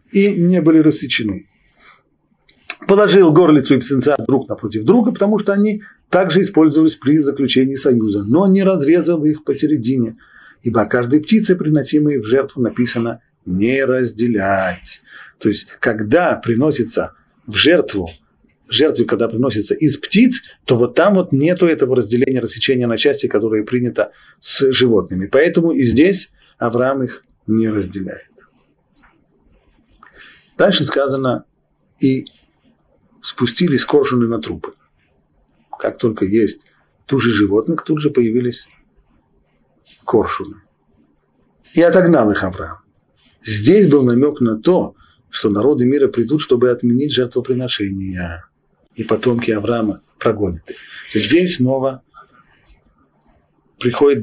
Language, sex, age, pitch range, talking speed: Russian, male, 40-59, 115-155 Hz, 115 wpm